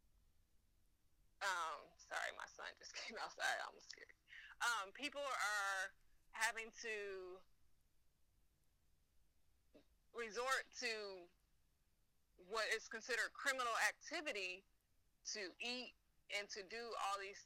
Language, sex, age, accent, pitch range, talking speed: English, female, 20-39, American, 195-250 Hz, 95 wpm